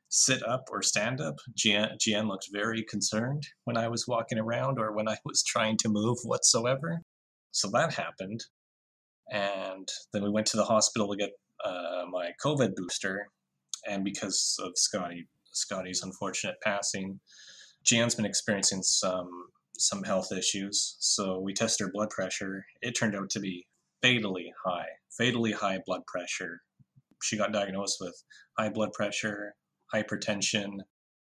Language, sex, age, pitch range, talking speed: English, male, 30-49, 95-115 Hz, 150 wpm